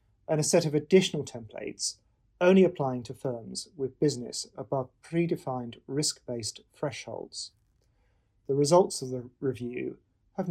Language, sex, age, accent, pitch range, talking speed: English, male, 40-59, British, 120-160 Hz, 125 wpm